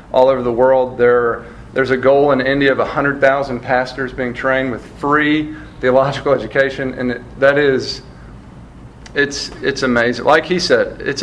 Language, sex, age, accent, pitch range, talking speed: English, male, 40-59, American, 130-155 Hz, 155 wpm